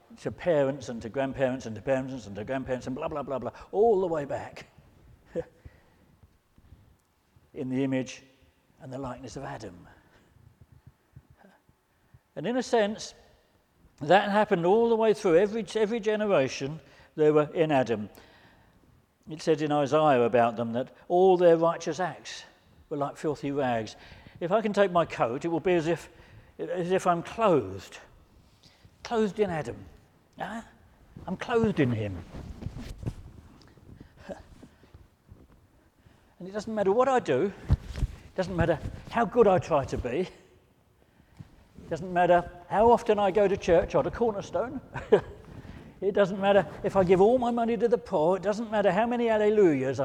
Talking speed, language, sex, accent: 155 wpm, English, male, British